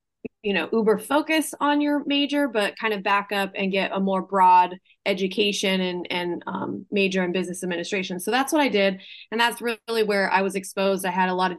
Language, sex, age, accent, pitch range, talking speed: English, female, 20-39, American, 185-215 Hz, 220 wpm